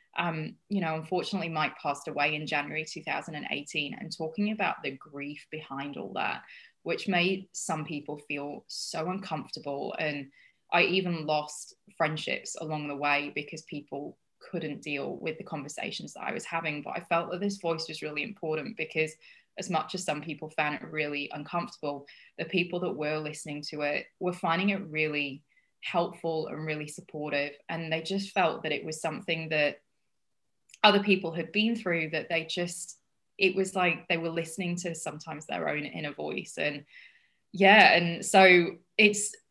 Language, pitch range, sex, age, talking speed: English, 150-180 Hz, female, 20-39, 170 wpm